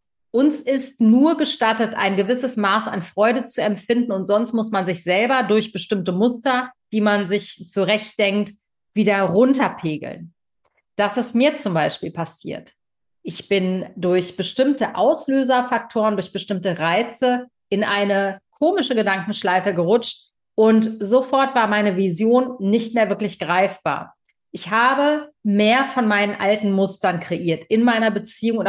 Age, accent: 40-59, German